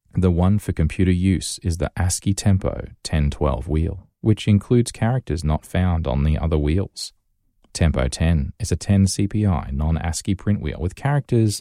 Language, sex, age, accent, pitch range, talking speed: English, male, 20-39, Australian, 80-100 Hz, 155 wpm